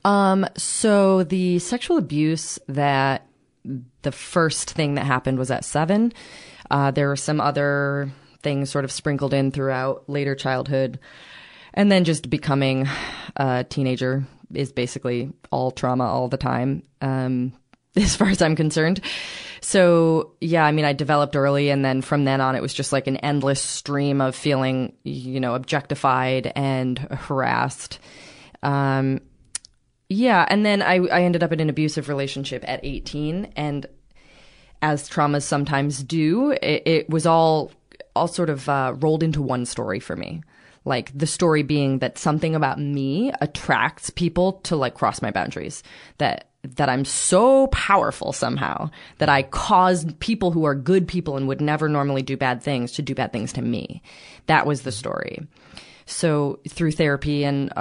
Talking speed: 160 wpm